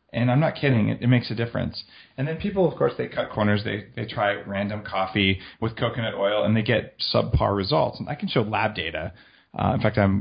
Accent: American